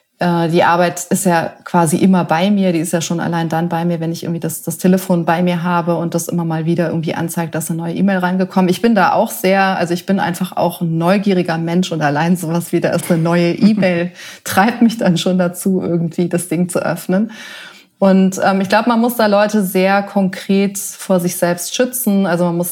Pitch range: 170-195 Hz